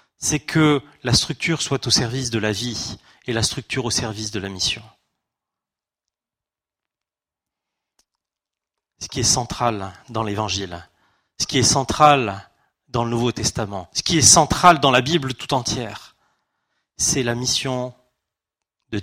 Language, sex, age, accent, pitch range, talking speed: French, male, 30-49, French, 110-140 Hz, 140 wpm